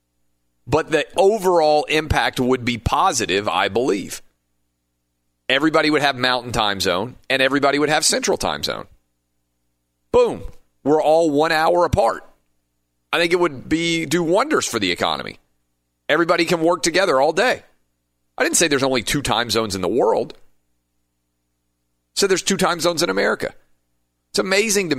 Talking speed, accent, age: 155 wpm, American, 40-59